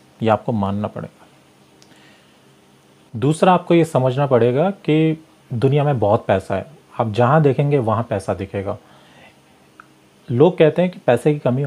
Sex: male